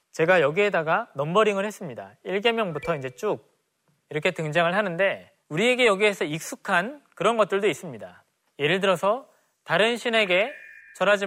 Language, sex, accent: Korean, male, native